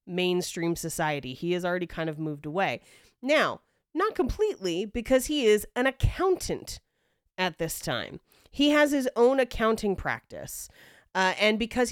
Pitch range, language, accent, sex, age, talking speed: 170-235 Hz, English, American, female, 30-49, 145 wpm